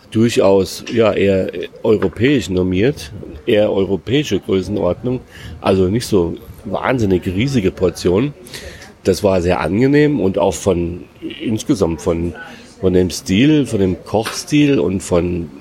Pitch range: 90-105 Hz